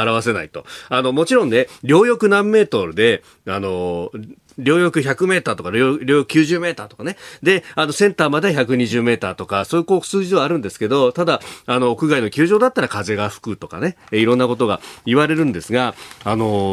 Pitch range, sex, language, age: 110-165 Hz, male, Japanese, 40-59